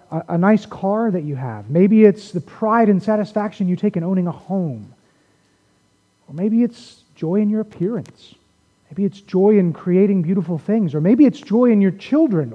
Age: 30-49